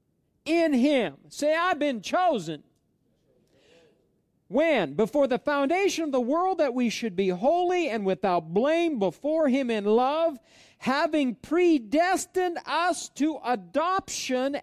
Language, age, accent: English, 50-69, American